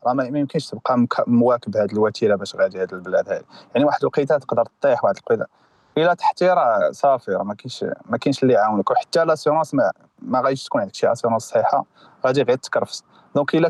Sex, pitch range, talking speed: male, 130-170 Hz, 195 wpm